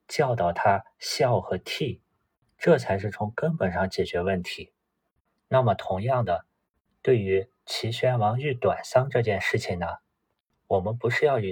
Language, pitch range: Chinese, 100-130 Hz